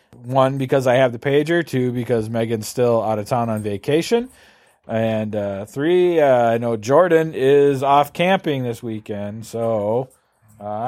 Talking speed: 160 wpm